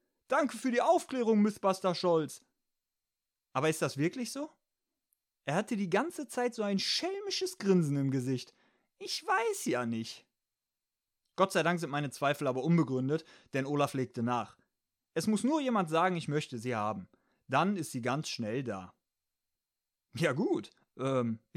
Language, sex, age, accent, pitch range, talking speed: German, male, 30-49, German, 130-195 Hz, 160 wpm